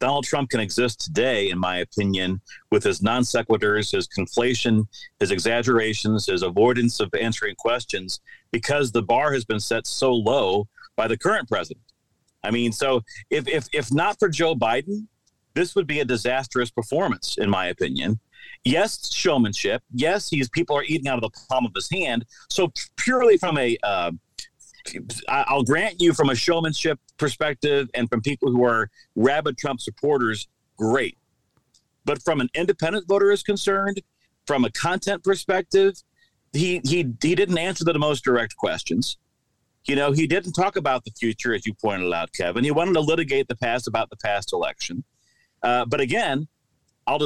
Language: English